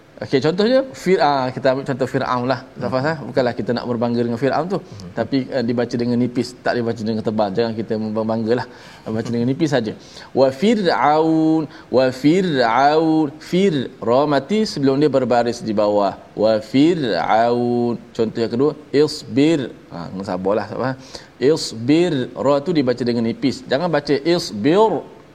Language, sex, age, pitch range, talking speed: Malayalam, male, 20-39, 115-150 Hz, 145 wpm